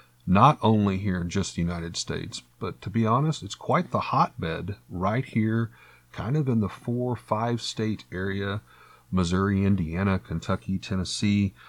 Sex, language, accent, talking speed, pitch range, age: male, English, American, 150 wpm, 90-110 Hz, 40-59